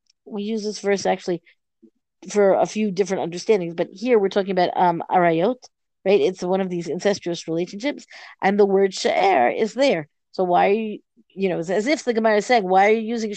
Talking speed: 210 wpm